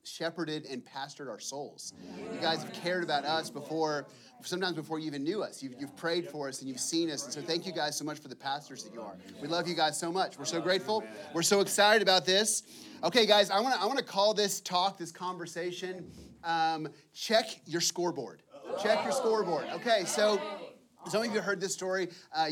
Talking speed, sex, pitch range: 215 wpm, male, 155-195 Hz